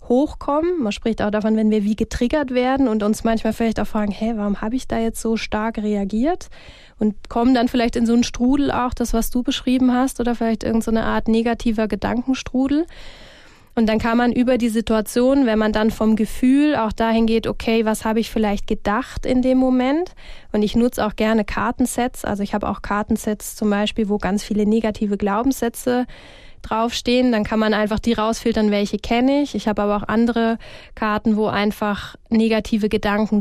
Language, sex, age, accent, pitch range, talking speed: German, female, 20-39, German, 215-245 Hz, 195 wpm